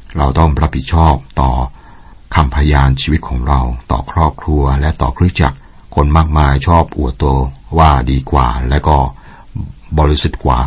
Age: 60-79